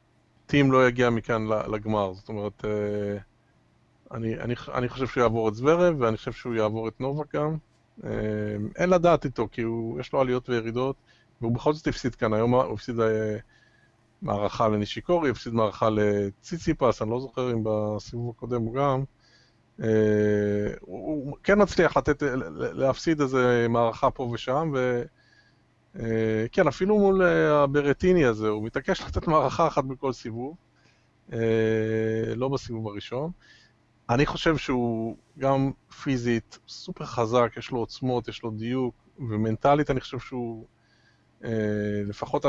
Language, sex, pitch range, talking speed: Hebrew, male, 110-135 Hz, 135 wpm